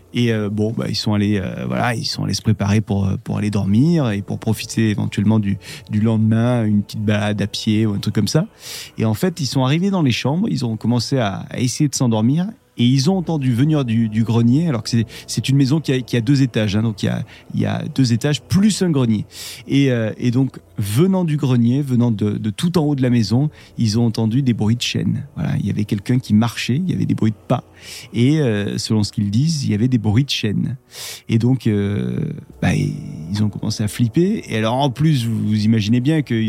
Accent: French